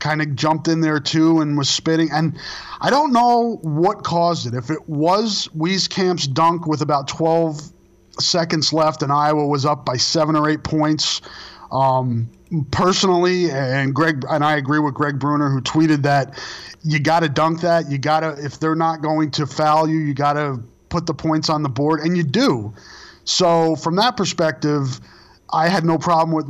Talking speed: 190 wpm